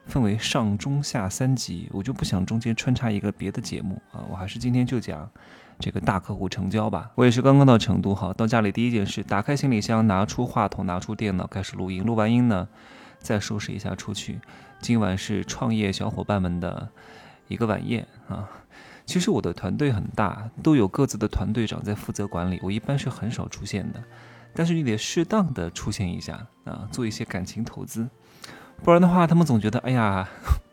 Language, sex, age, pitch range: Chinese, male, 20-39, 100-125 Hz